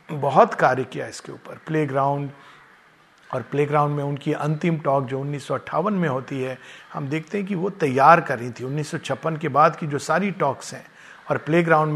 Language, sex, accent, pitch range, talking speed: Hindi, male, native, 140-180 Hz, 180 wpm